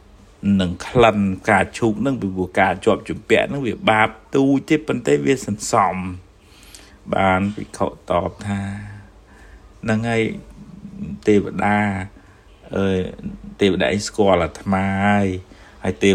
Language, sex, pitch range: English, male, 95-115 Hz